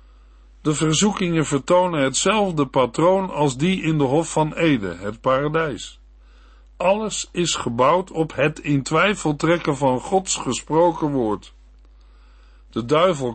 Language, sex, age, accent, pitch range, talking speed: Dutch, male, 50-69, Dutch, 115-165 Hz, 125 wpm